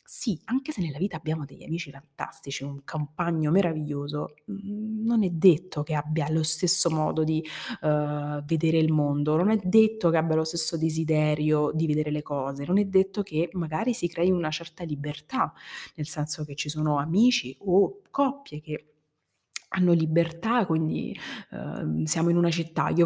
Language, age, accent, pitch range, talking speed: Italian, 30-49, native, 150-180 Hz, 165 wpm